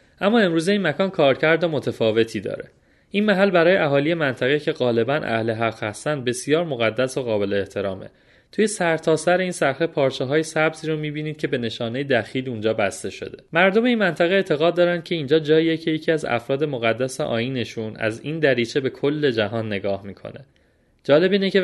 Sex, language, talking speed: male, Persian, 175 wpm